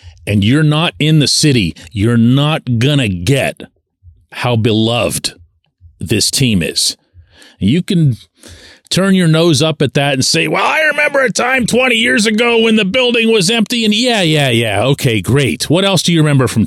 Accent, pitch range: American, 95-155 Hz